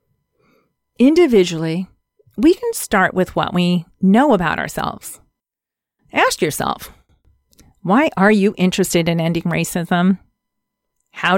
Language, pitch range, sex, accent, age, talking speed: English, 185-235 Hz, female, American, 40-59, 105 wpm